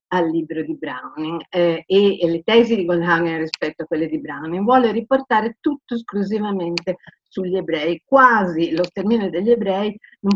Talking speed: 160 wpm